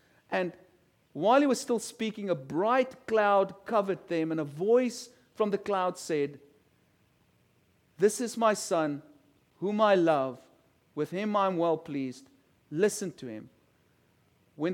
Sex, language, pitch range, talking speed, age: male, English, 140-190 Hz, 145 wpm, 40-59